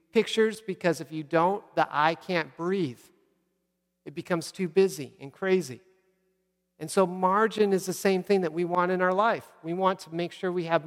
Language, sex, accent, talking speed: English, male, American, 195 wpm